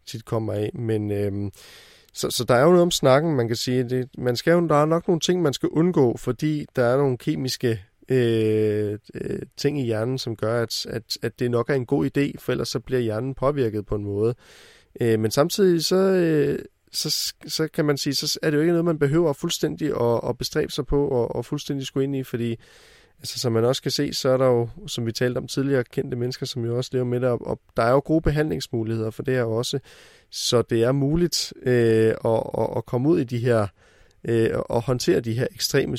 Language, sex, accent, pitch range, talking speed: Danish, male, native, 115-140 Hz, 235 wpm